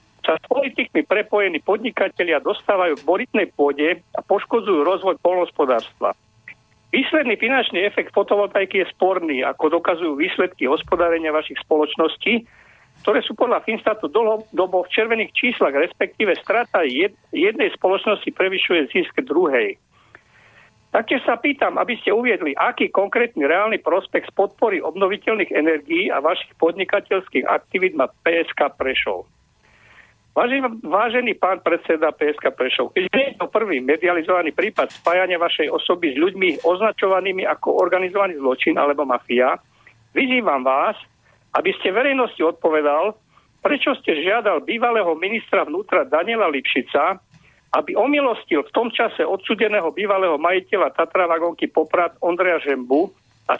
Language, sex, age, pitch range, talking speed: Slovak, male, 50-69, 170-240 Hz, 120 wpm